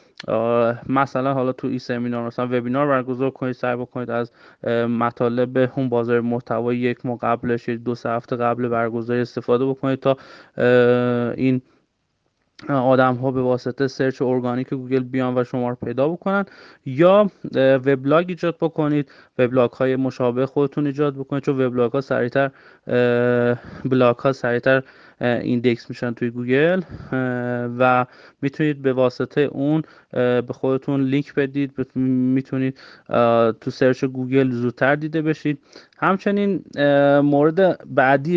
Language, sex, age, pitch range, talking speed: Persian, male, 30-49, 125-140 Hz, 125 wpm